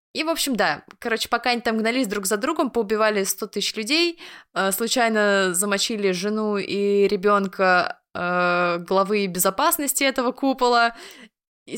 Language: Russian